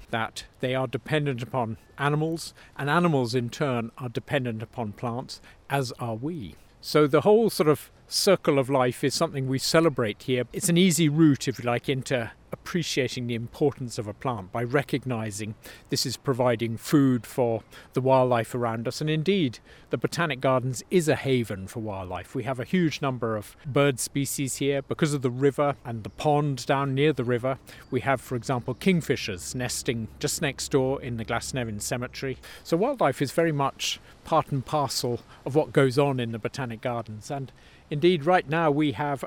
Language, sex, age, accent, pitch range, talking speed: English, male, 40-59, British, 120-150 Hz, 185 wpm